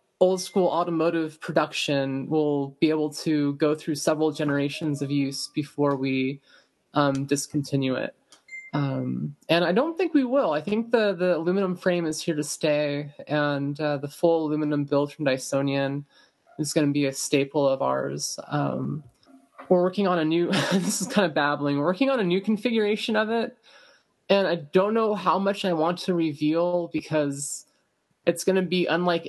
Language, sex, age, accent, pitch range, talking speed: English, male, 20-39, American, 145-180 Hz, 175 wpm